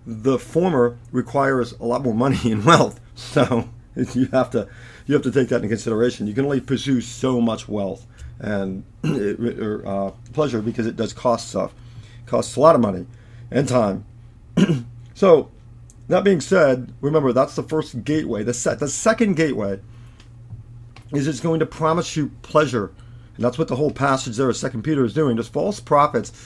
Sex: male